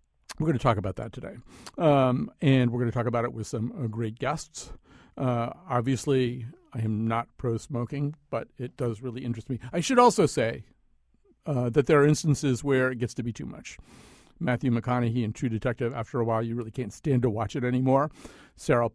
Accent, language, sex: American, English, male